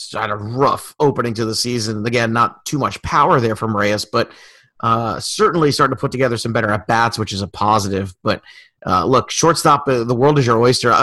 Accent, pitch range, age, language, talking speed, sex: American, 115-150 Hz, 30-49, English, 210 wpm, male